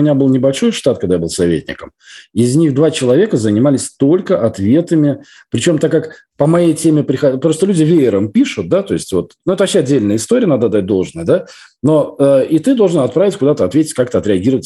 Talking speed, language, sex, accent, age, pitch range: 205 wpm, Russian, male, native, 40-59, 120-160 Hz